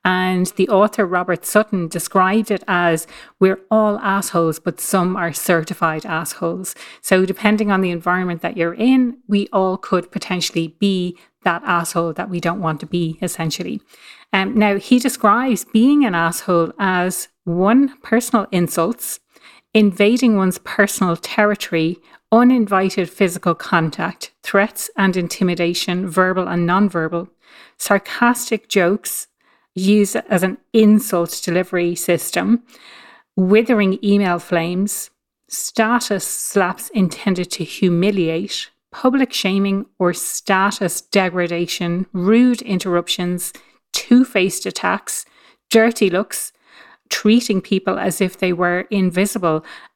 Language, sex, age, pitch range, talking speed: English, female, 30-49, 175-210 Hz, 115 wpm